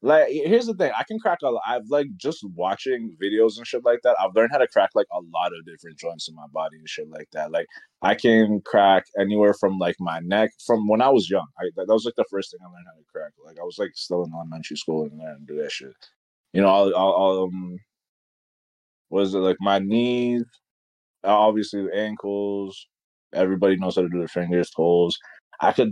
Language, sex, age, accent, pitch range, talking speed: English, male, 20-39, American, 95-120 Hz, 230 wpm